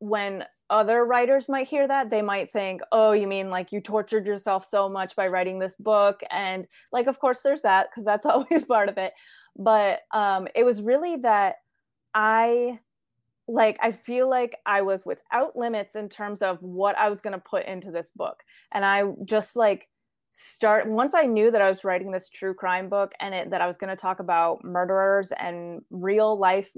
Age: 20-39